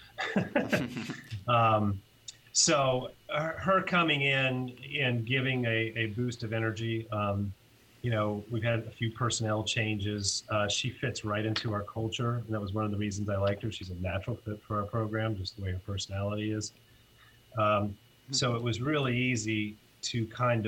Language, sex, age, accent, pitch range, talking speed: English, male, 30-49, American, 105-120 Hz, 170 wpm